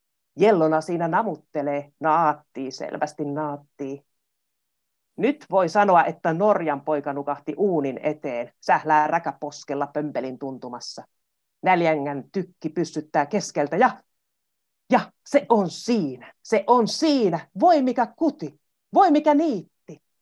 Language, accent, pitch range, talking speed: Finnish, native, 150-215 Hz, 110 wpm